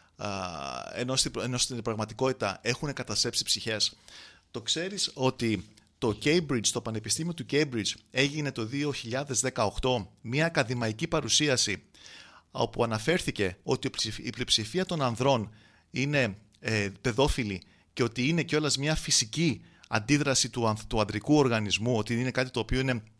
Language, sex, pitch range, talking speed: Greek, male, 110-140 Hz, 135 wpm